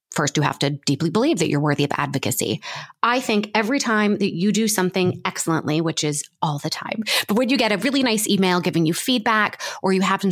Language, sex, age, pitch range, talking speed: English, female, 20-39, 160-210 Hz, 225 wpm